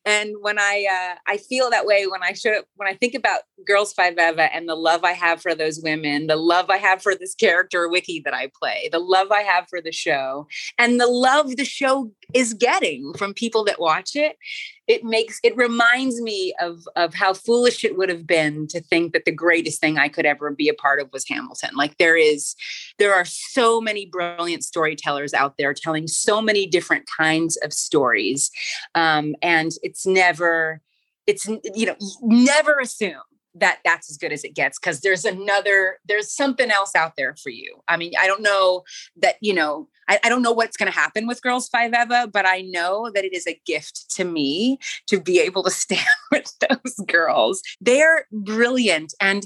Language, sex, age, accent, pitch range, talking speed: English, female, 30-49, American, 170-235 Hz, 205 wpm